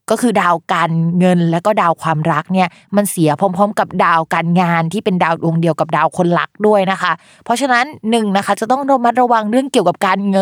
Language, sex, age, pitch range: Thai, female, 20-39, 170-220 Hz